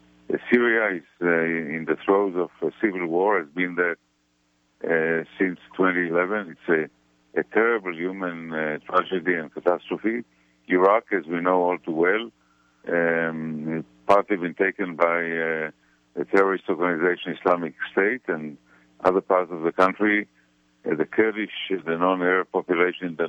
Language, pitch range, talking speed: English, 75-95 Hz, 150 wpm